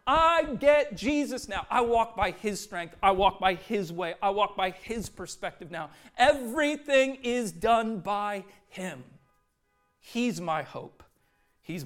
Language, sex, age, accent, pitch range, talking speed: English, male, 40-59, American, 160-215 Hz, 145 wpm